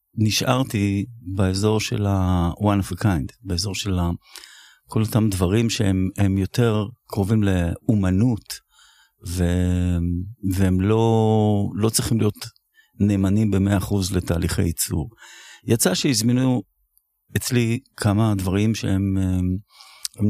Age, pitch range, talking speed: 50-69, 95-120 Hz, 100 wpm